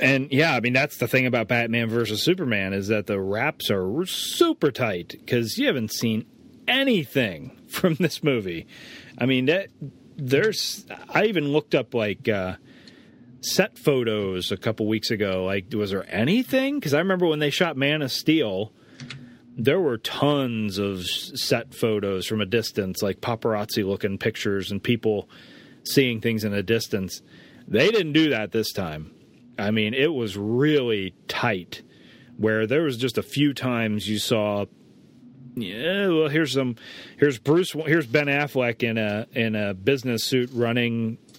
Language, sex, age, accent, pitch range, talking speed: English, male, 40-59, American, 105-135 Hz, 160 wpm